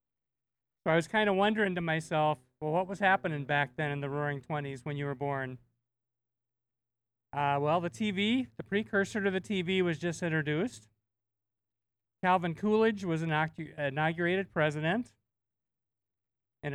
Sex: male